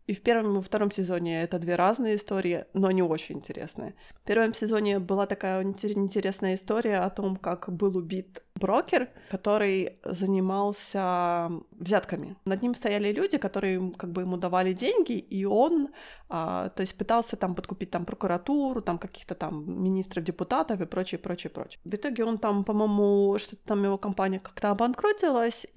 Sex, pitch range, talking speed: female, 185-220 Hz, 165 wpm